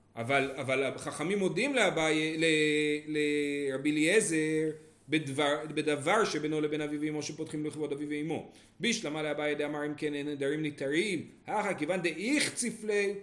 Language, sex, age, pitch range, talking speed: Hebrew, male, 40-59, 145-210 Hz, 130 wpm